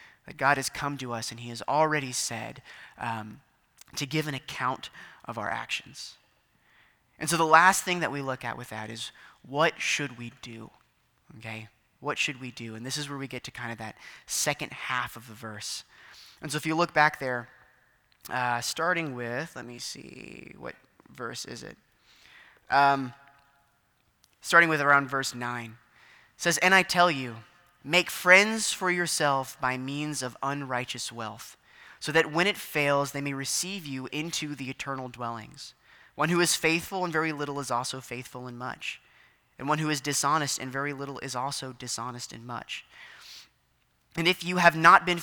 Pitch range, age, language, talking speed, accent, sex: 125-155 Hz, 20-39, English, 180 wpm, American, male